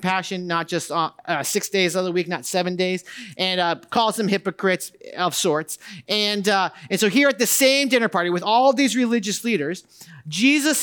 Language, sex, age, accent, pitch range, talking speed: English, male, 30-49, American, 165-230 Hz, 200 wpm